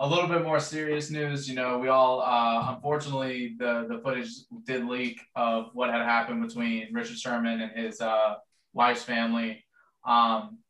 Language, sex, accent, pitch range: English, male, American, 115-135 Hz